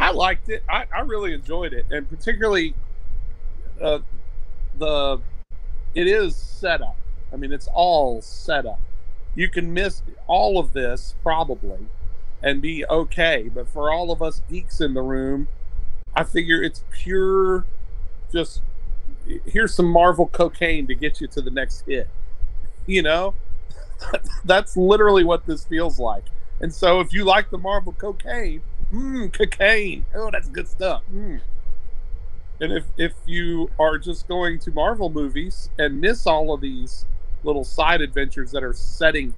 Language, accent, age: English, American, 40-59